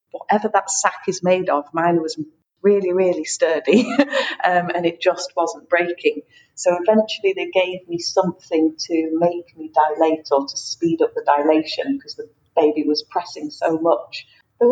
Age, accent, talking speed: 40-59, British, 165 wpm